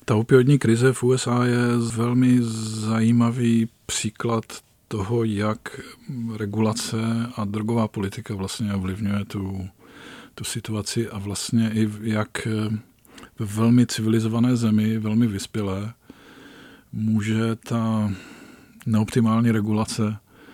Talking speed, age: 100 wpm, 40-59